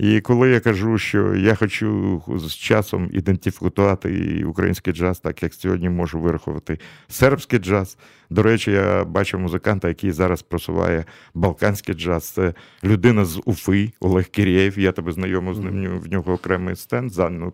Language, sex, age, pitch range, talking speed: Russian, male, 50-69, 90-110 Hz, 150 wpm